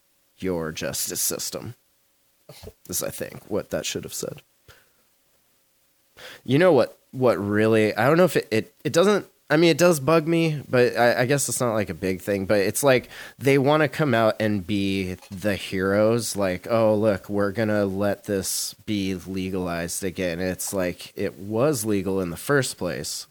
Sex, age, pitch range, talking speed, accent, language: male, 30-49, 90-115 Hz, 185 wpm, American, English